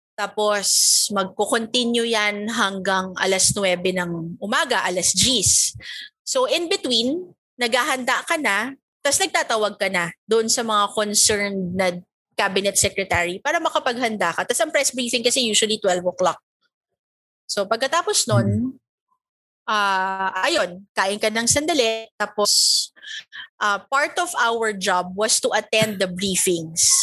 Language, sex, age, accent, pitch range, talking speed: Filipino, female, 20-39, native, 195-255 Hz, 130 wpm